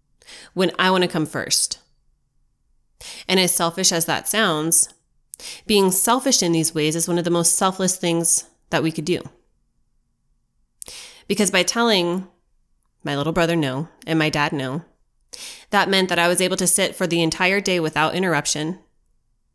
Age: 30-49